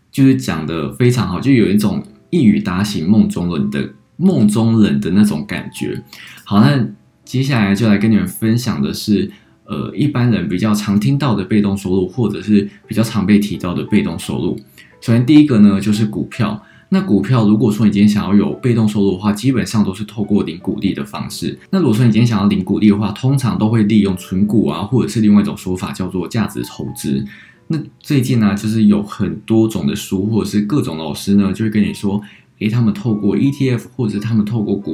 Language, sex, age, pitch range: Chinese, male, 20-39, 100-115 Hz